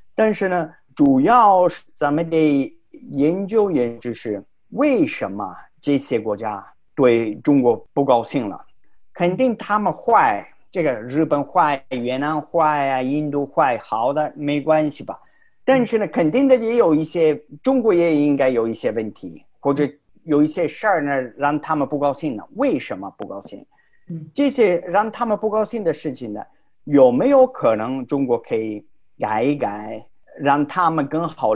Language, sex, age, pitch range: Chinese, male, 50-69, 135-210 Hz